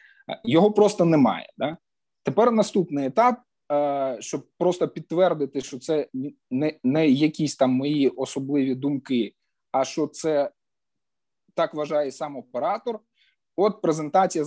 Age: 20-39